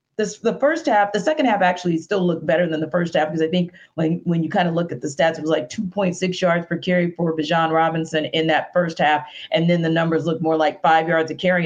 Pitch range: 160-200 Hz